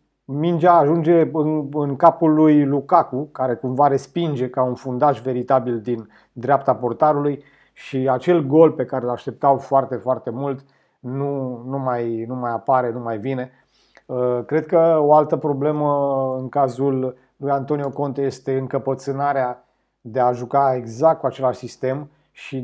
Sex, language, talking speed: male, Romanian, 145 wpm